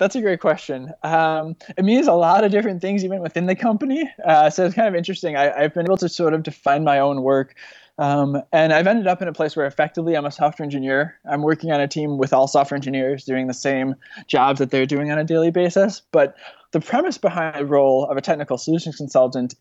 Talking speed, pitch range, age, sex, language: 235 wpm, 140-170 Hz, 20-39, male, English